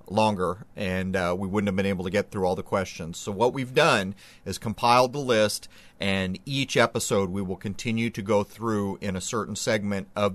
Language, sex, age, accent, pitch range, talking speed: English, male, 30-49, American, 105-150 Hz, 210 wpm